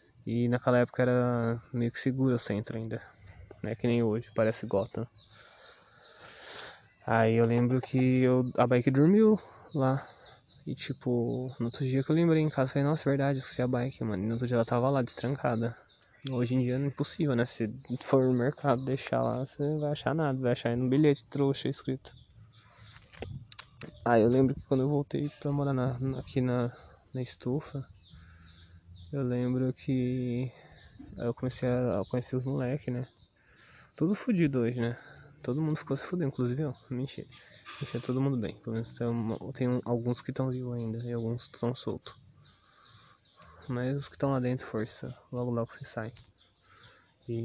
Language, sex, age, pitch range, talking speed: Portuguese, male, 20-39, 115-135 Hz, 185 wpm